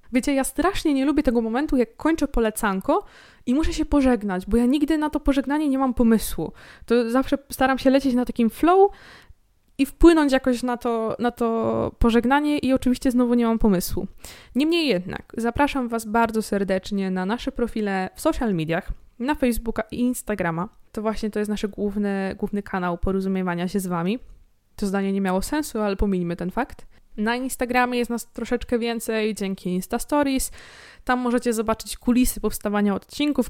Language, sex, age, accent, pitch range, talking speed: Polish, female, 20-39, native, 205-265 Hz, 175 wpm